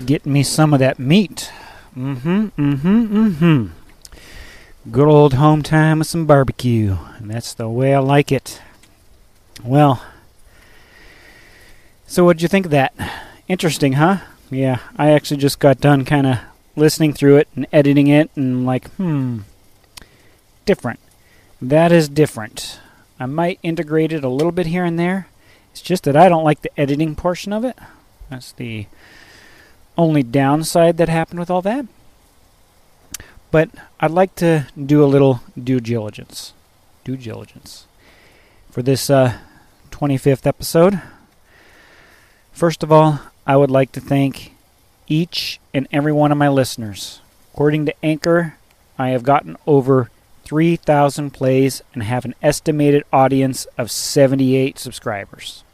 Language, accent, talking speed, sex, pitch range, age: English, American, 140 wpm, male, 120-155 Hz, 30-49